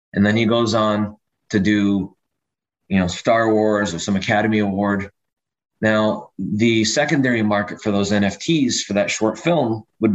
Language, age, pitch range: English, 20-39, 95-110 Hz